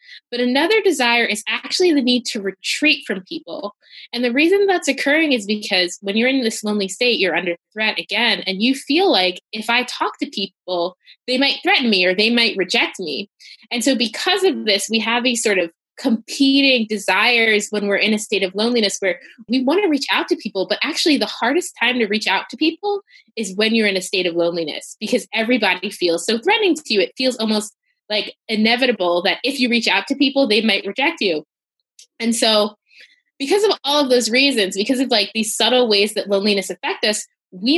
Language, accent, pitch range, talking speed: English, American, 200-275 Hz, 210 wpm